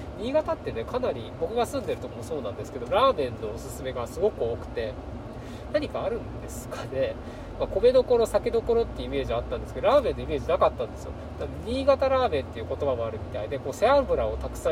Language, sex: Japanese, male